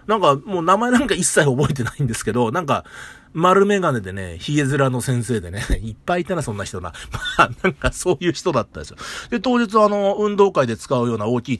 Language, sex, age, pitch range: Japanese, male, 40-59, 120-190 Hz